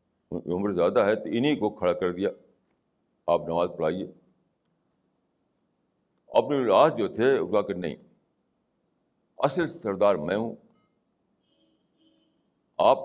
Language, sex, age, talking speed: Urdu, male, 60-79, 110 wpm